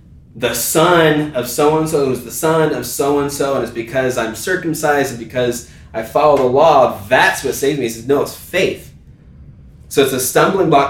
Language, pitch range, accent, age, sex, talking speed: English, 105-140 Hz, American, 20-39, male, 185 wpm